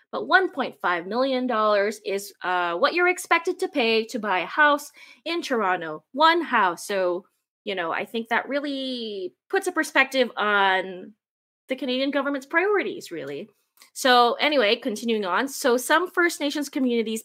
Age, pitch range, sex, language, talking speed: 20-39, 195-275 Hz, female, English, 150 wpm